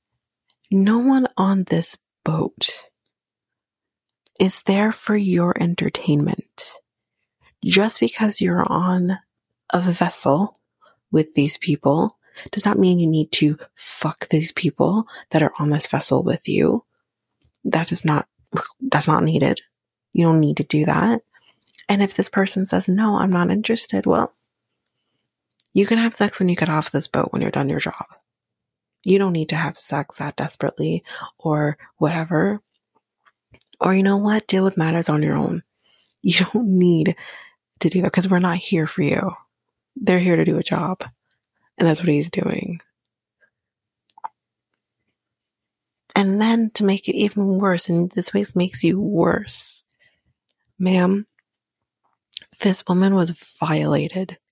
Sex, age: female, 30-49